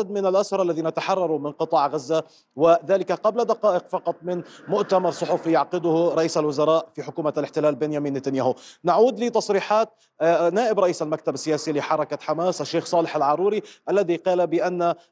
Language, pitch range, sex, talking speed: Arabic, 160-190 Hz, male, 145 wpm